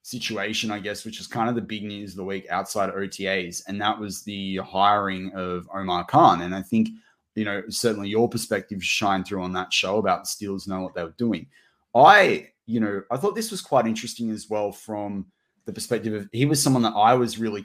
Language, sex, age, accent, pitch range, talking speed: English, male, 20-39, Australian, 95-115 Hz, 225 wpm